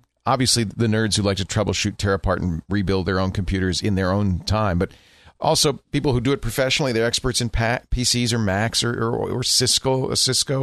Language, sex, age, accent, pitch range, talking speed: English, male, 40-59, American, 95-125 Hz, 205 wpm